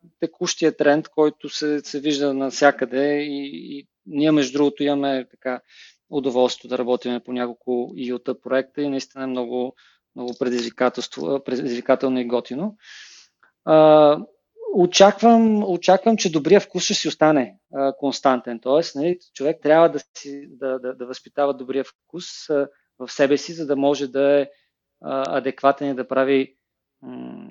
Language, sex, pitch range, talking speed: Bulgarian, male, 130-160 Hz, 135 wpm